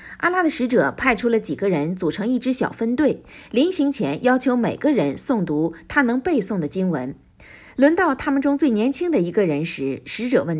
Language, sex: Chinese, female